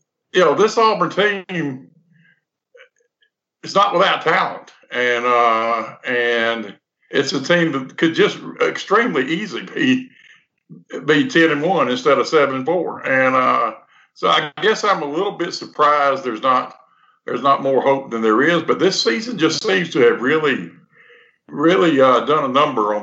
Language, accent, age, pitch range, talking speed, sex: English, American, 60-79, 125-185 Hz, 165 wpm, male